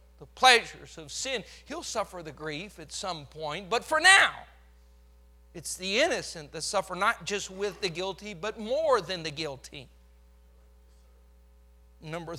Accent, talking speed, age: American, 145 wpm, 40-59